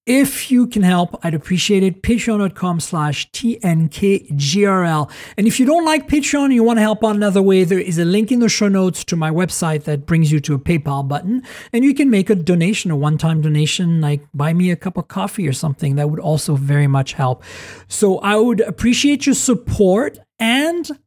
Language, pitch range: English, 145-215 Hz